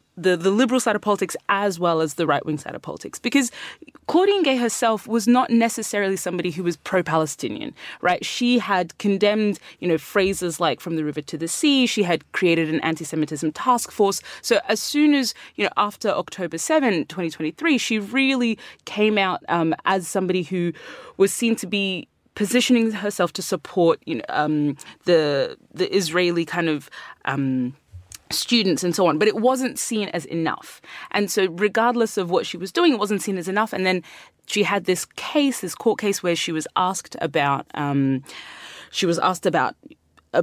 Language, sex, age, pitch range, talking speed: English, female, 20-39, 170-220 Hz, 180 wpm